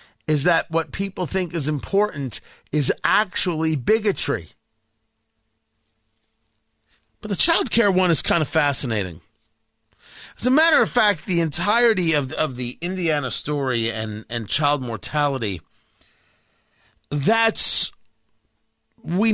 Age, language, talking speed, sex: 40-59, English, 115 wpm, male